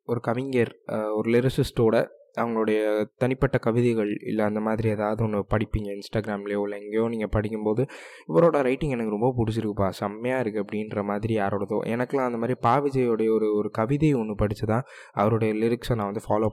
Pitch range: 105-125 Hz